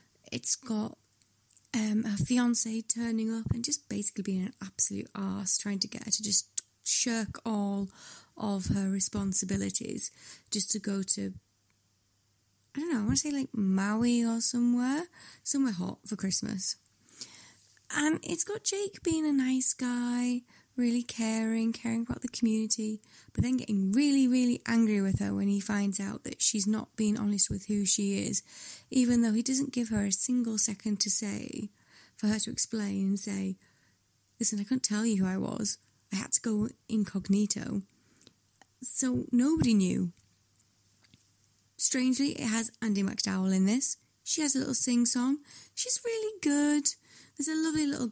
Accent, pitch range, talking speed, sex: British, 200-245 Hz, 165 wpm, female